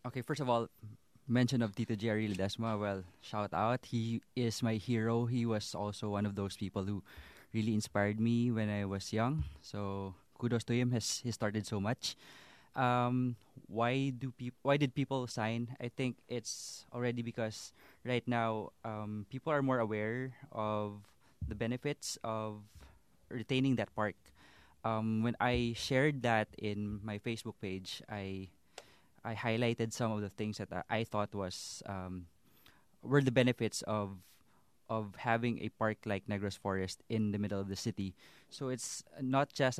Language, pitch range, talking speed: English, 100-120 Hz, 165 wpm